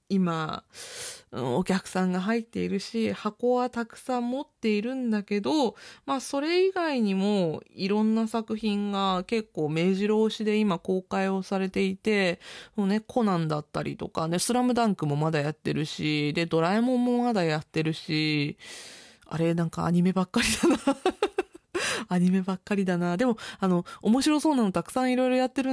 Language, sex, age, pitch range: Japanese, female, 20-39, 160-230 Hz